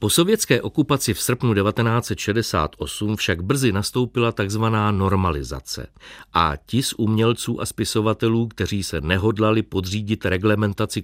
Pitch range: 95-120 Hz